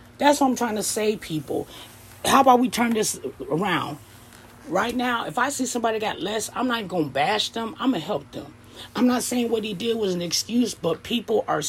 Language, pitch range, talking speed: English, 155-240 Hz, 225 wpm